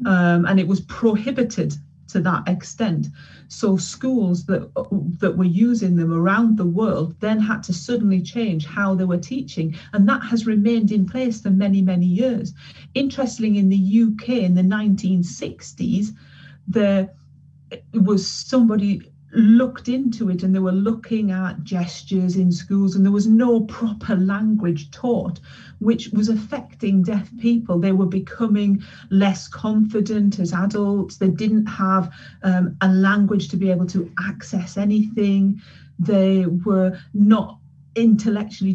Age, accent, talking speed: 40-59, British, 145 wpm